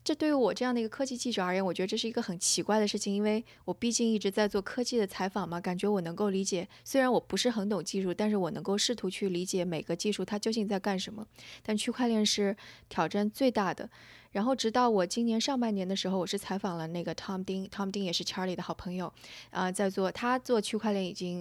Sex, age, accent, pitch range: female, 20-39, native, 185-230 Hz